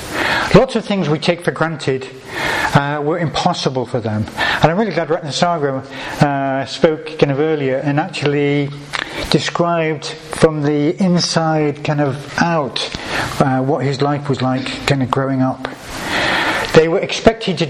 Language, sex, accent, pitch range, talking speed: English, male, British, 135-165 Hz, 155 wpm